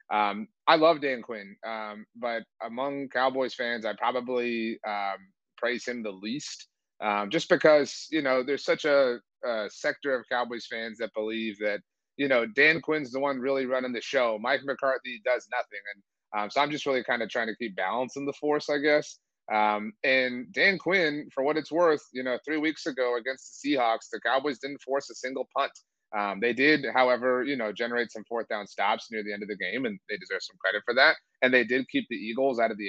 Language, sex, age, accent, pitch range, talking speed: English, male, 30-49, American, 110-140 Hz, 220 wpm